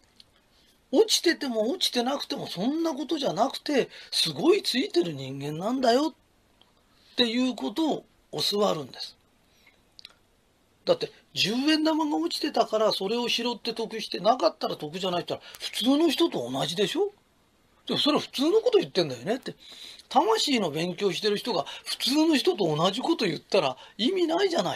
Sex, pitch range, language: male, 220-315 Hz, Japanese